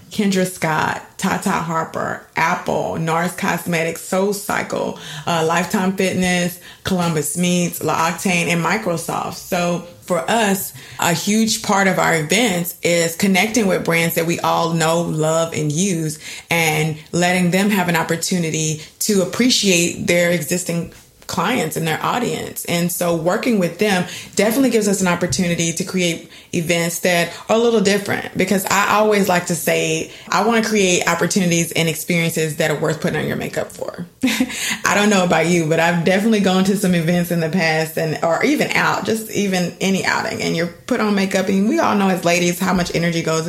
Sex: female